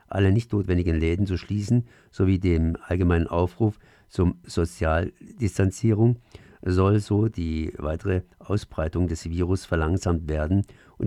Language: German